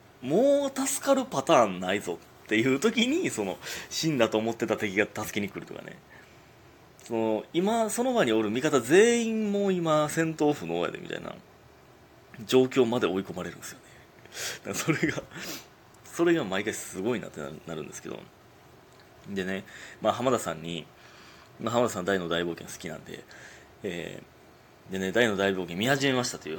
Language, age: Japanese, 30-49